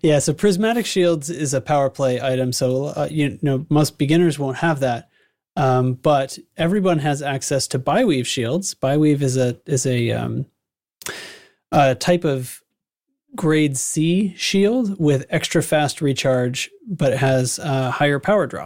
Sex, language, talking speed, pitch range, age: male, English, 160 wpm, 130-160 Hz, 30-49